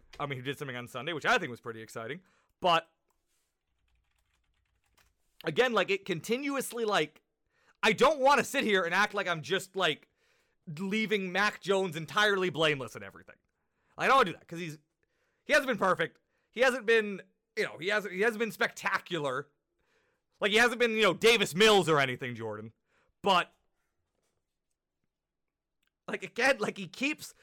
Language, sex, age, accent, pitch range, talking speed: English, male, 30-49, American, 170-230 Hz, 170 wpm